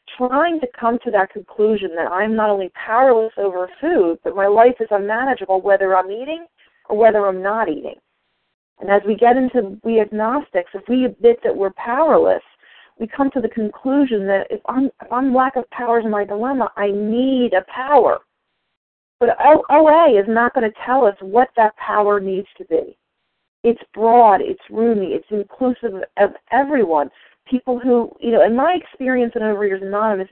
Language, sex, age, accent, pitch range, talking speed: English, female, 40-59, American, 195-260 Hz, 185 wpm